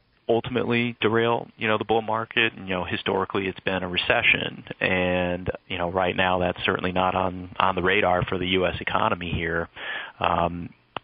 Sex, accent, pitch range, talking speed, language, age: male, American, 90-100 Hz, 180 wpm, English, 30-49